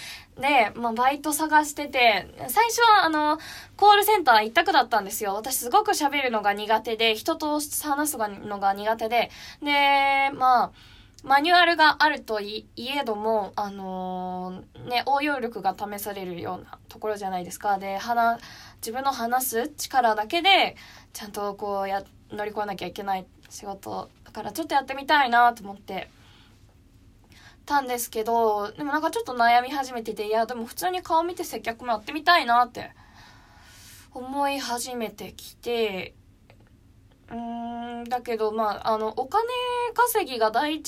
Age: 20-39